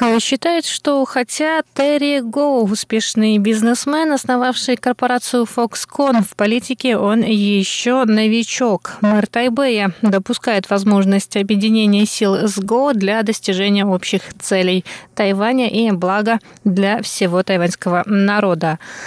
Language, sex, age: Russian, female, 20-39